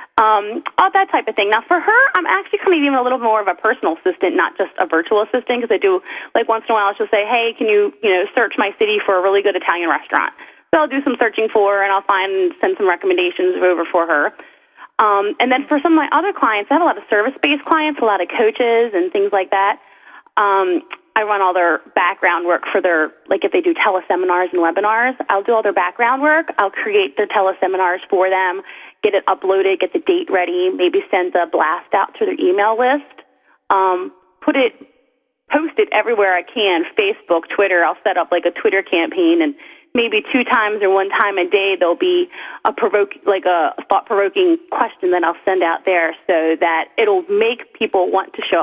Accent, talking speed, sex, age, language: American, 225 wpm, female, 20-39, English